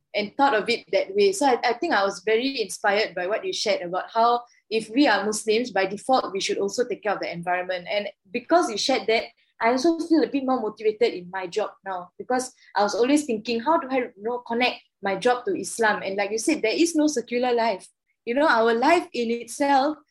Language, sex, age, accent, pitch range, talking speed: English, female, 20-39, Malaysian, 200-275 Hz, 235 wpm